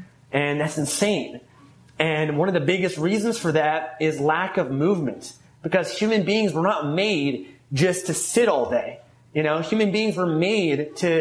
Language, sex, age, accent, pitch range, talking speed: English, male, 30-49, American, 150-190 Hz, 175 wpm